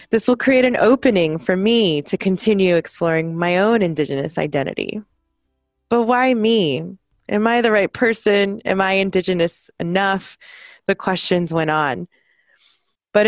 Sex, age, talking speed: female, 20-39, 140 wpm